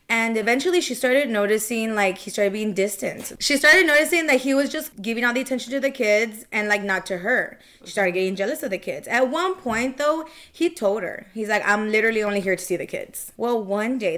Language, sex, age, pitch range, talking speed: English, female, 20-39, 200-250 Hz, 235 wpm